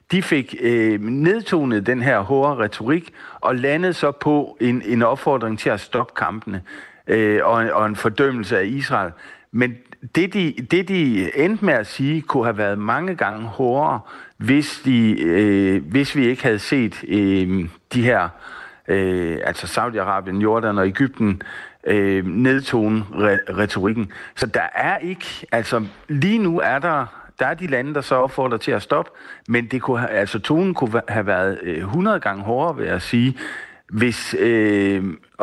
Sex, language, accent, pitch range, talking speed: male, Danish, native, 100-135 Hz, 165 wpm